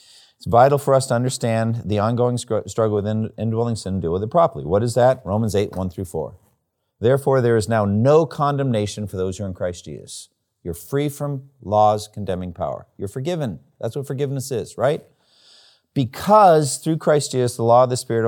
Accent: American